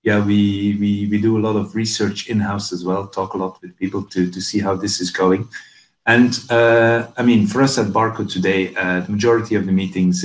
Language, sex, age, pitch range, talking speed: English, male, 40-59, 90-105 Hz, 230 wpm